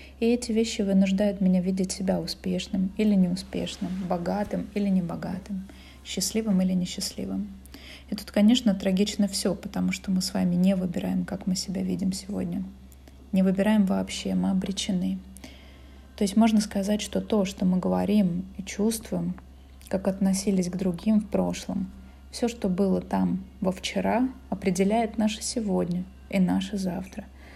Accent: native